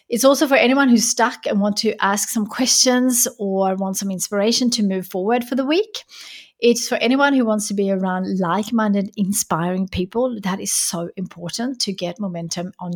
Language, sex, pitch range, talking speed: English, female, 190-240 Hz, 190 wpm